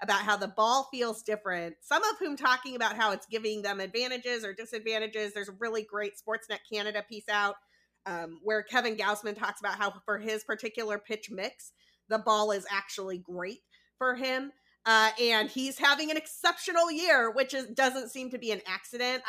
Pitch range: 205-255 Hz